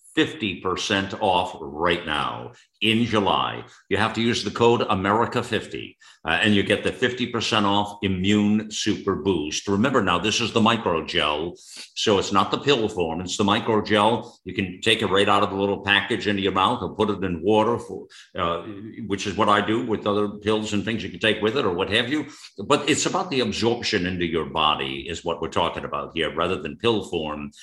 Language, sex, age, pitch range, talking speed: English, male, 50-69, 90-115 Hz, 205 wpm